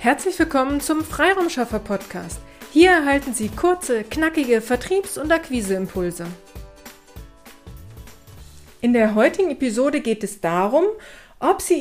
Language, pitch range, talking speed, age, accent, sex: German, 230-295 Hz, 105 wpm, 40-59, German, female